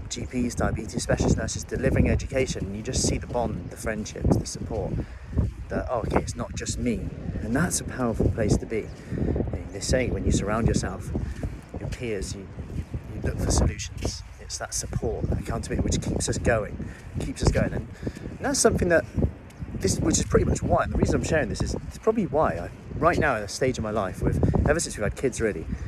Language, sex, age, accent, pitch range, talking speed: English, male, 30-49, British, 95-130 Hz, 215 wpm